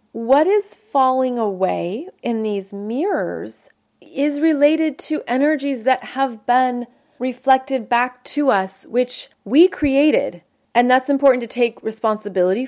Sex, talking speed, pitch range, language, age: female, 130 wpm, 205-270 Hz, English, 30-49